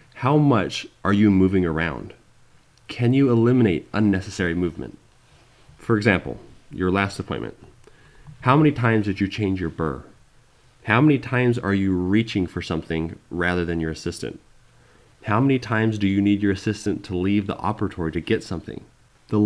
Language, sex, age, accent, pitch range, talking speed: English, male, 30-49, American, 90-115 Hz, 160 wpm